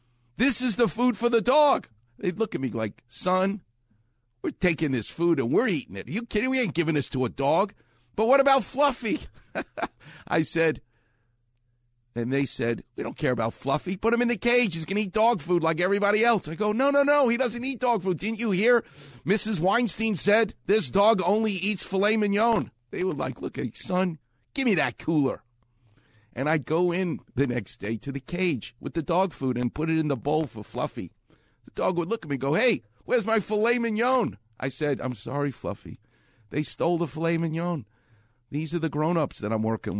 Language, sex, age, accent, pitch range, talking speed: English, male, 50-69, American, 120-195 Hz, 215 wpm